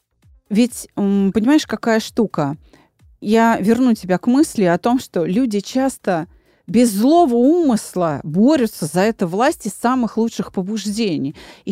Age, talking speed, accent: 30-49, 130 wpm, native